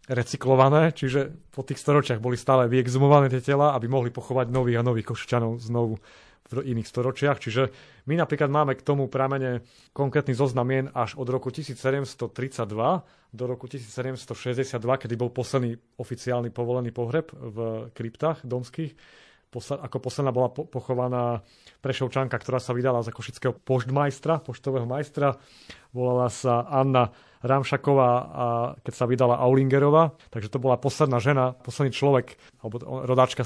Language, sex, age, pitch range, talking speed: Slovak, male, 30-49, 120-135 Hz, 135 wpm